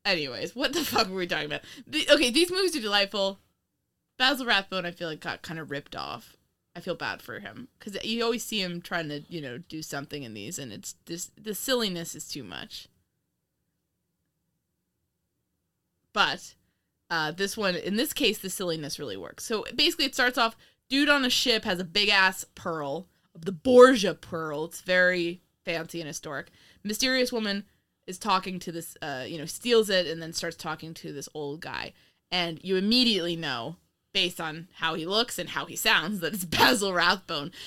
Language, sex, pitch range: English, female, 170-250 Hz